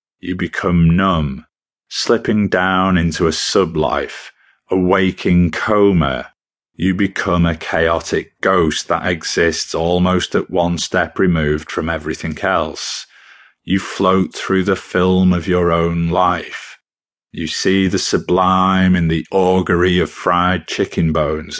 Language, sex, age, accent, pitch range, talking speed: English, male, 40-59, British, 85-95 Hz, 130 wpm